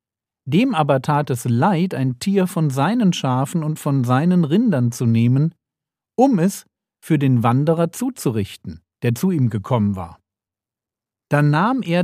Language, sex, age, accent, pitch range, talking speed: German, male, 50-69, German, 110-150 Hz, 150 wpm